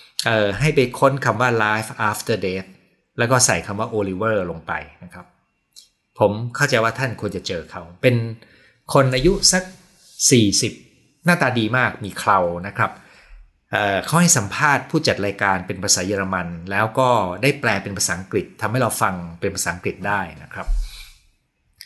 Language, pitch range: Thai, 100-135 Hz